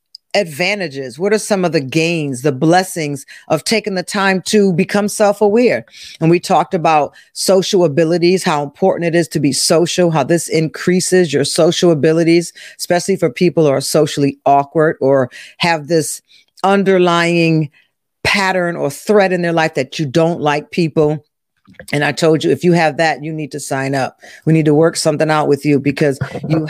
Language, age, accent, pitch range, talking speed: English, 40-59, American, 145-175 Hz, 180 wpm